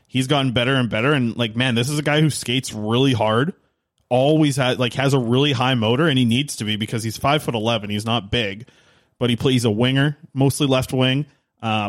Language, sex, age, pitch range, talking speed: English, male, 20-39, 115-140 Hz, 230 wpm